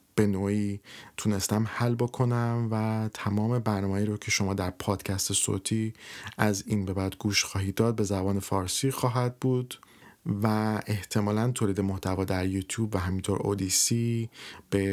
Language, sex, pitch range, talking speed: Persian, male, 100-110 Hz, 145 wpm